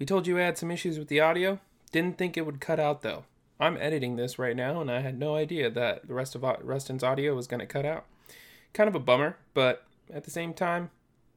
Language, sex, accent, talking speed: English, male, American, 250 wpm